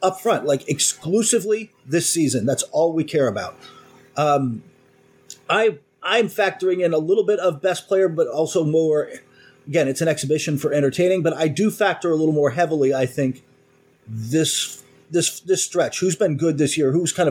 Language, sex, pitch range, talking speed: English, male, 135-180 Hz, 180 wpm